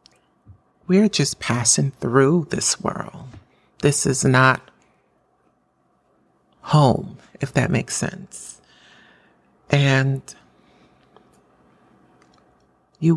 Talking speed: 75 wpm